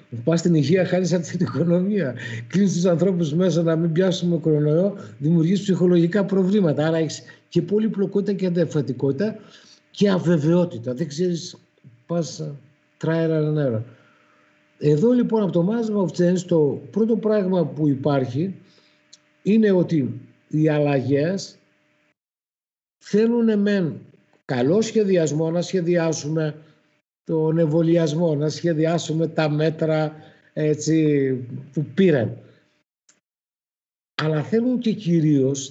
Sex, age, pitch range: male, 60-79, 150-190 Hz